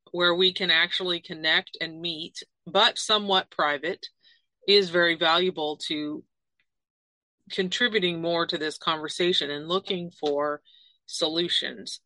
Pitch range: 165-195 Hz